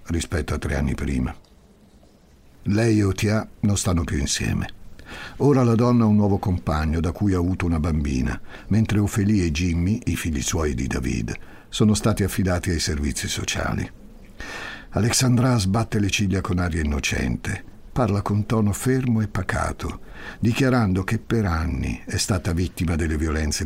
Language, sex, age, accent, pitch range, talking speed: Italian, male, 60-79, native, 85-110 Hz, 155 wpm